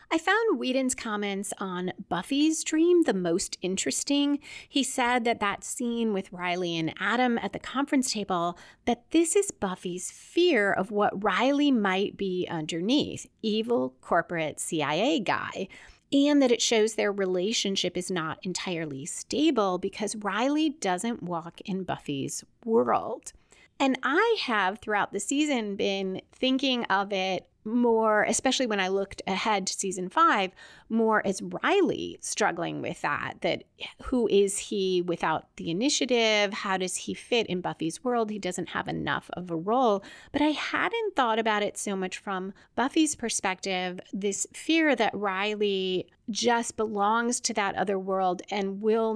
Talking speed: 150 wpm